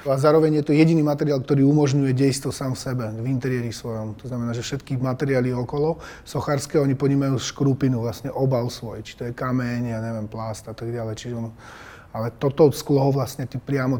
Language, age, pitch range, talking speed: Slovak, 30-49, 120-140 Hz, 195 wpm